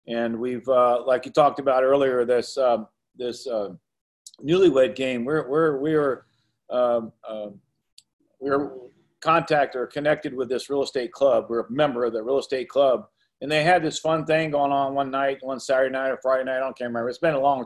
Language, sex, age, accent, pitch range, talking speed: English, male, 40-59, American, 125-150 Hz, 205 wpm